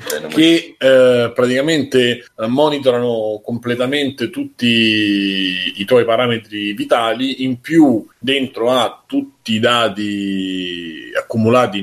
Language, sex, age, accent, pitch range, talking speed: Italian, male, 30-49, native, 105-140 Hz, 90 wpm